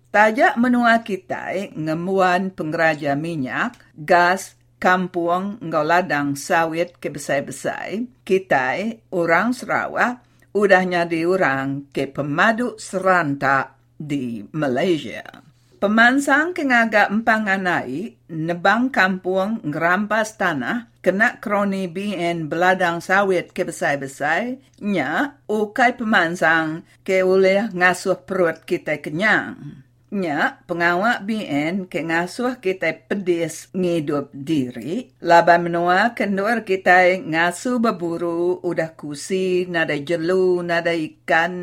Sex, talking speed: female, 100 wpm